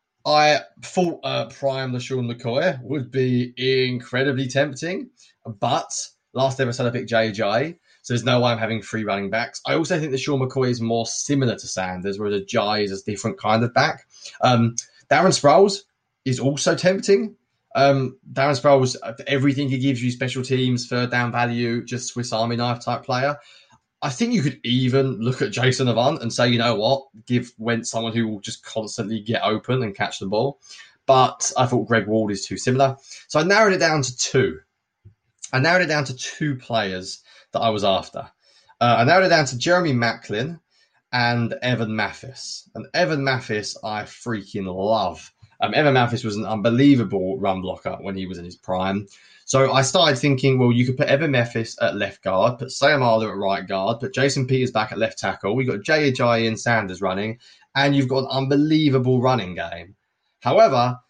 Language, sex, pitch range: English, male, 110-135 Hz